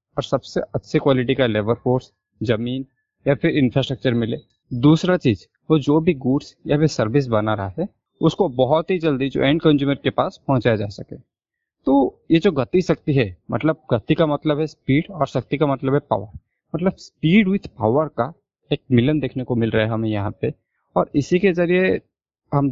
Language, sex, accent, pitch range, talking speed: Hindi, male, native, 115-155 Hz, 195 wpm